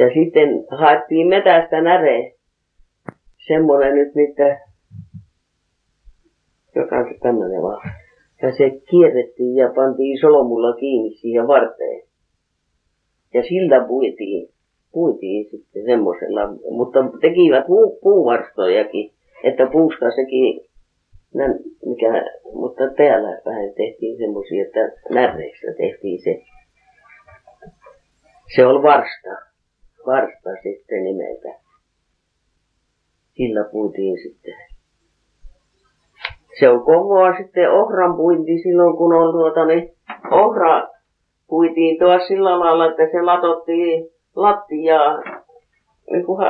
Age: 30-49